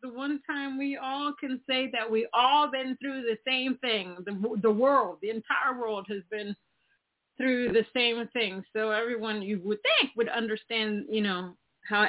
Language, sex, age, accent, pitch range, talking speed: English, female, 30-49, American, 175-235 Hz, 185 wpm